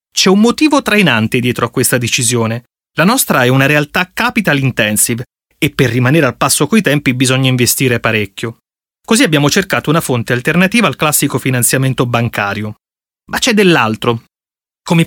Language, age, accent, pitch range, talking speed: Italian, 30-49, native, 125-185 Hz, 155 wpm